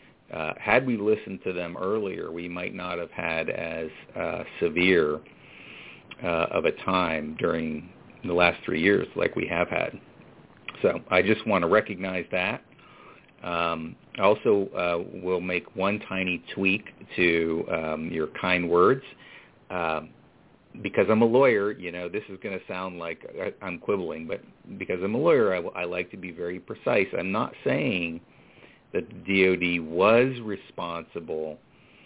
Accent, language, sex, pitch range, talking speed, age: American, English, male, 85-95 Hz, 155 wpm, 50-69